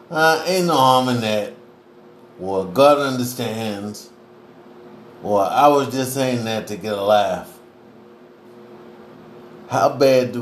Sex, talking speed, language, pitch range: male, 125 wpm, English, 110-120 Hz